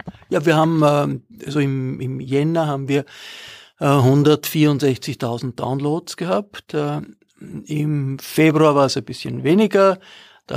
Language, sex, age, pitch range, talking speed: German, male, 50-69, 135-155 Hz, 115 wpm